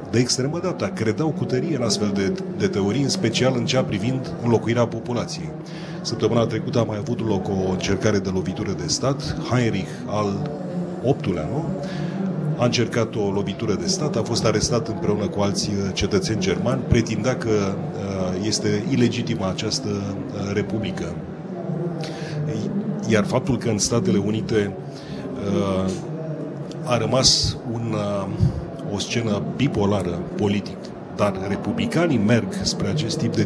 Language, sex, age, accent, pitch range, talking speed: Romanian, male, 30-49, native, 110-175 Hz, 130 wpm